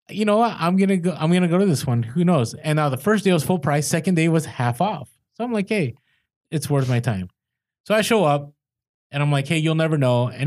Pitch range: 125-170 Hz